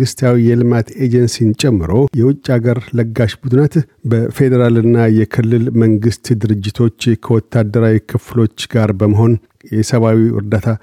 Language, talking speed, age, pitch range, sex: Amharic, 105 wpm, 50-69, 110-130 Hz, male